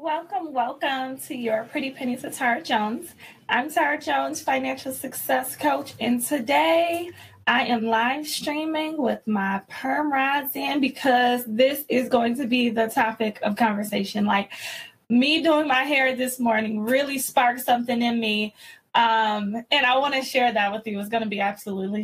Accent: American